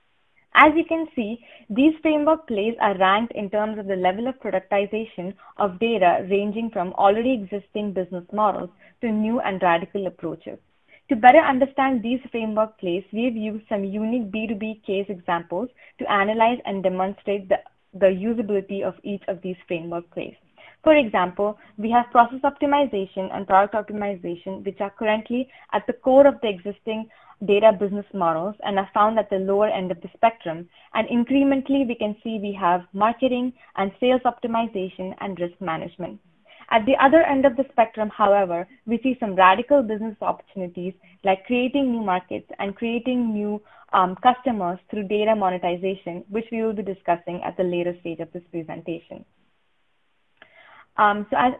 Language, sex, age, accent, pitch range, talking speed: English, female, 20-39, Indian, 190-240 Hz, 165 wpm